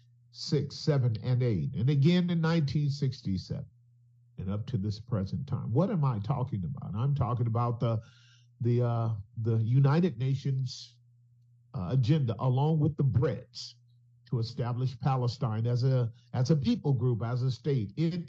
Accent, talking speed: American, 155 wpm